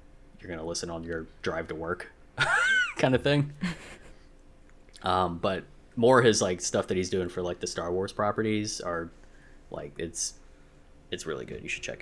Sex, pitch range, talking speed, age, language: male, 85-105 Hz, 180 wpm, 20-39, English